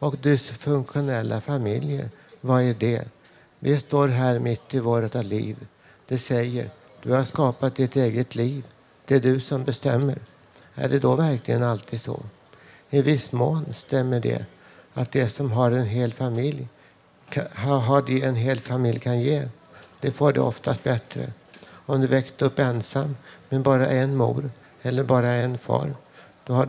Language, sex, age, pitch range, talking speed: Swedish, male, 60-79, 120-140 Hz, 160 wpm